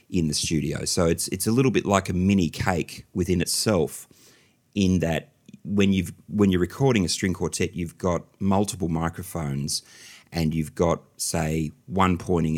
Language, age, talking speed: English, 30-49, 165 wpm